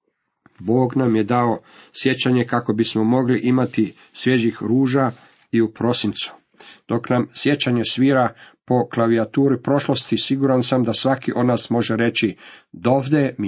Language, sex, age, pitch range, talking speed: Croatian, male, 50-69, 110-125 Hz, 140 wpm